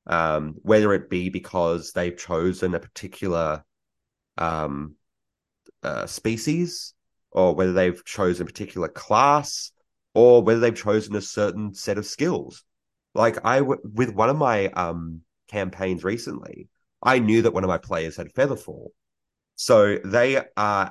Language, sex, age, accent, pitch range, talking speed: English, male, 30-49, Australian, 90-115 Hz, 140 wpm